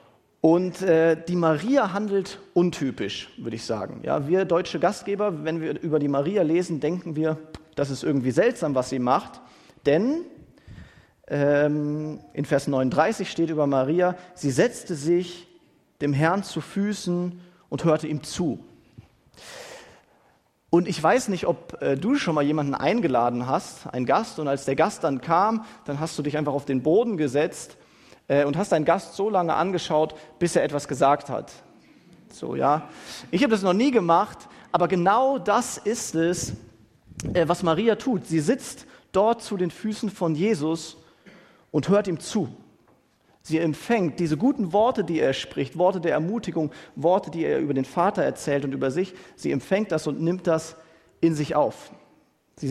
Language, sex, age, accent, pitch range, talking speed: German, male, 40-59, German, 150-190 Hz, 165 wpm